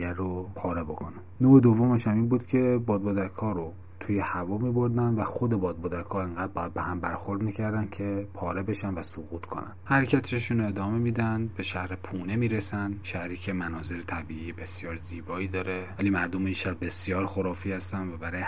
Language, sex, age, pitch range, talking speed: Persian, male, 30-49, 90-105 Hz, 170 wpm